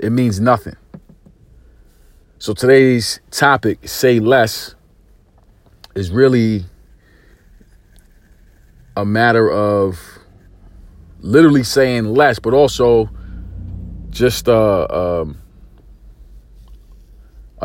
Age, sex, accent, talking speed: 40-59, male, American, 70 wpm